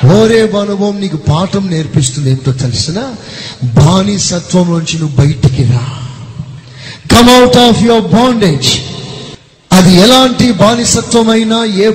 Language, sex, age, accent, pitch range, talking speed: Telugu, male, 30-49, native, 145-240 Hz, 100 wpm